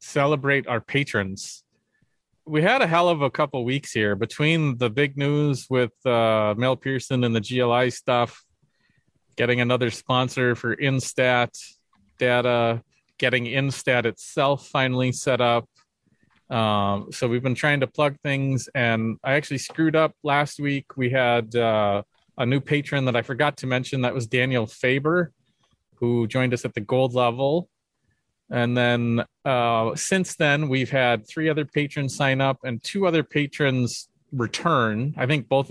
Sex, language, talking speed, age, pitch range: male, English, 155 wpm, 30-49, 120-140 Hz